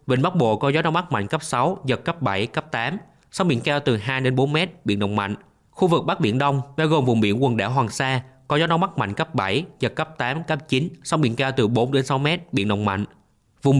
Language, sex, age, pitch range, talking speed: Vietnamese, male, 20-39, 115-150 Hz, 275 wpm